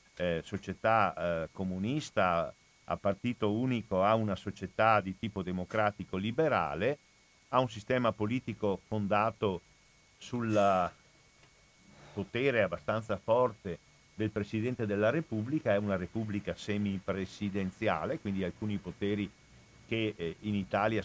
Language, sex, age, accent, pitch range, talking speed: Italian, male, 50-69, native, 95-110 Hz, 110 wpm